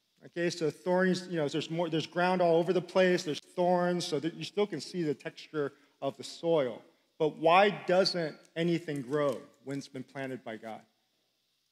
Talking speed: 190 wpm